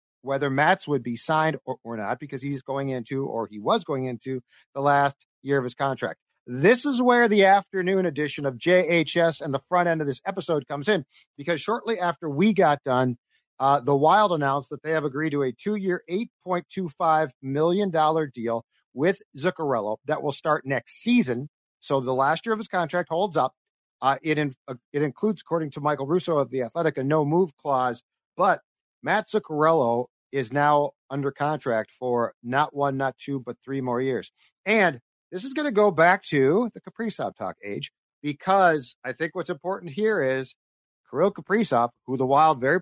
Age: 50-69